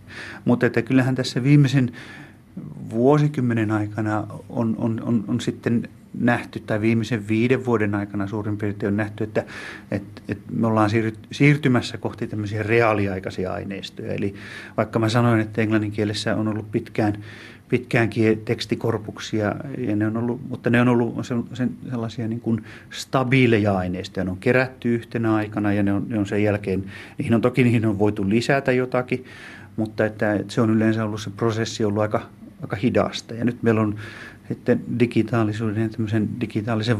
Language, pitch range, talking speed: Finnish, 105-120 Hz, 155 wpm